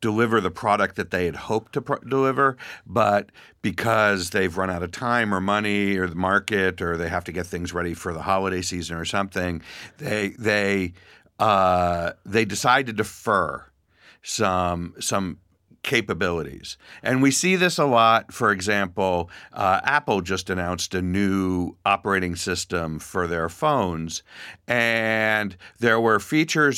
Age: 50-69